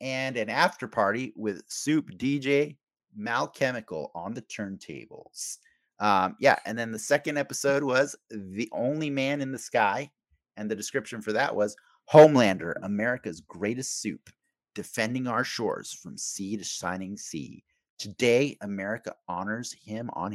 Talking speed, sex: 140 wpm, male